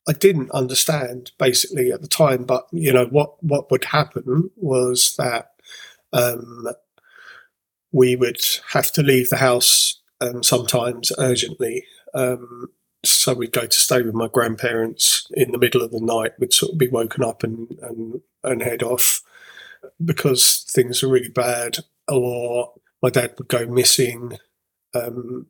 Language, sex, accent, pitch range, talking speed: English, male, British, 120-145 Hz, 155 wpm